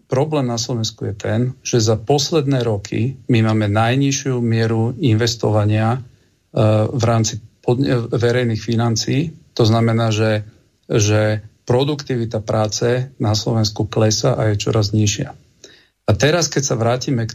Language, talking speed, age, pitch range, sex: Slovak, 130 wpm, 40-59, 110-125 Hz, male